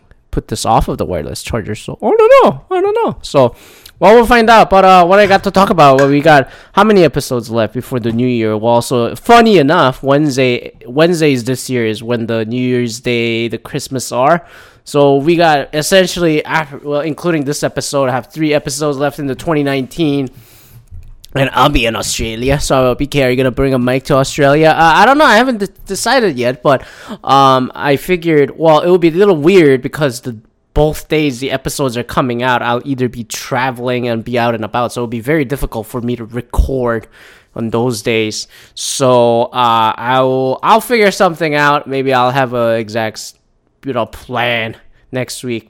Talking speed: 205 wpm